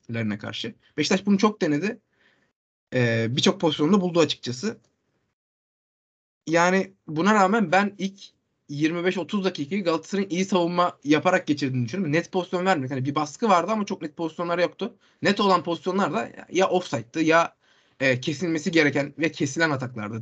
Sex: male